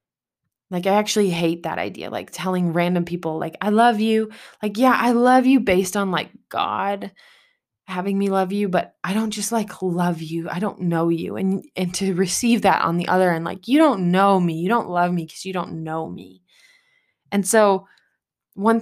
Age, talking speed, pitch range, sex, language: 20-39, 205 wpm, 175-215 Hz, female, English